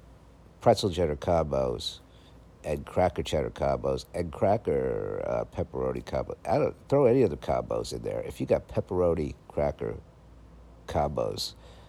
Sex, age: male, 50-69